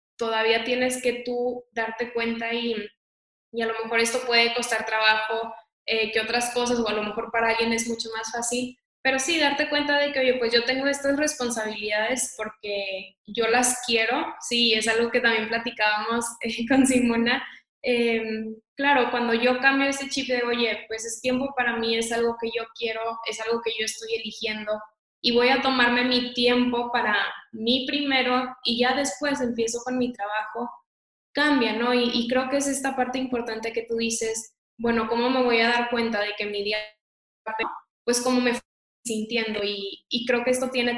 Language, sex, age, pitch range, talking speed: Spanish, female, 10-29, 225-255 Hz, 190 wpm